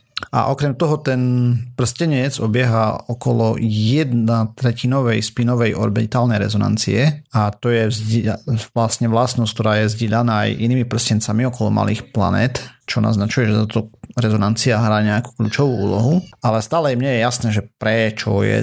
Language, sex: Slovak, male